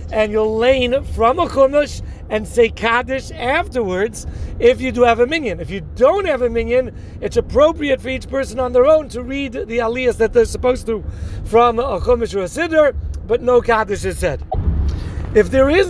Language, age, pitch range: English, 40-59, 215-260 Hz